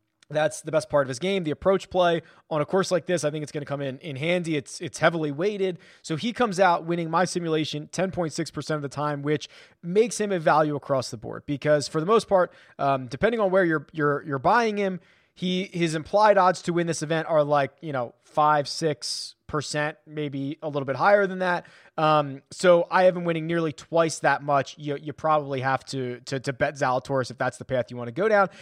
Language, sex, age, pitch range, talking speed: English, male, 20-39, 145-185 Hz, 235 wpm